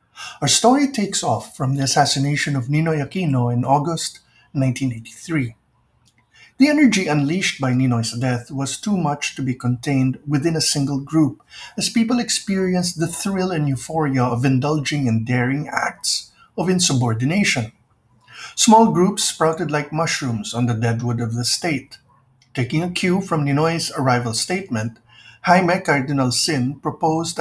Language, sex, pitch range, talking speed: English, male, 125-175 Hz, 140 wpm